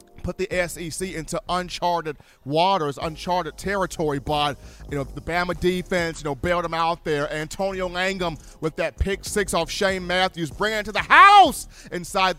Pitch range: 155-205 Hz